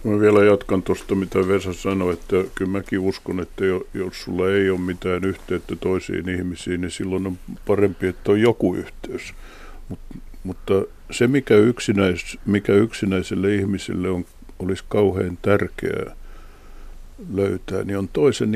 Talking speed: 140 wpm